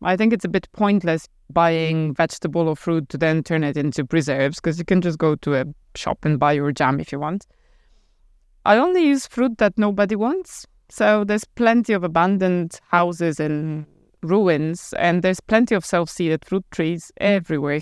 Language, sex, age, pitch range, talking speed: English, female, 20-39, 165-215 Hz, 180 wpm